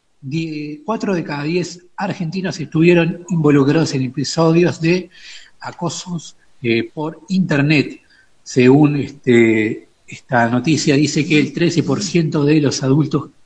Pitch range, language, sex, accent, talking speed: 140-170 Hz, Spanish, male, Argentinian, 105 wpm